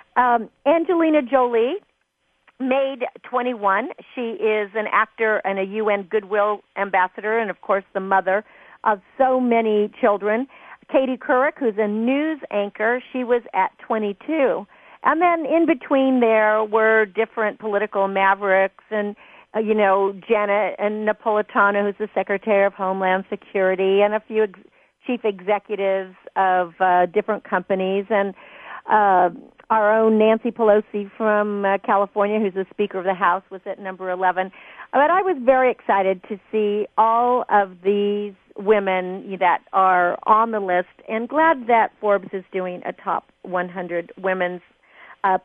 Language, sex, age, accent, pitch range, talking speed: English, female, 50-69, American, 195-235 Hz, 145 wpm